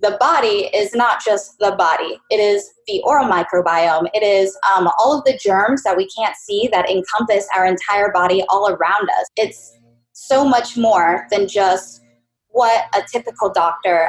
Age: 10-29